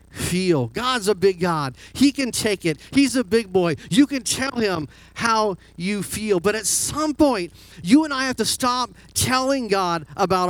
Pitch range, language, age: 135-215 Hz, English, 40-59